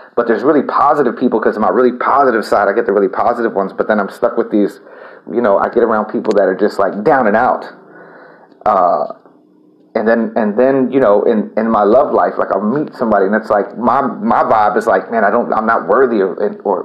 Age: 30-49